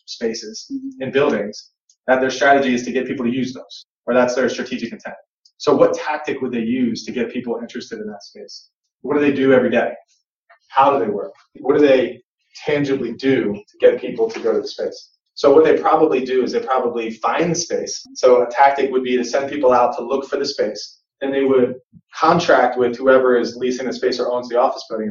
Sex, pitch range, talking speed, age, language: male, 125-180 Hz, 220 wpm, 30-49, English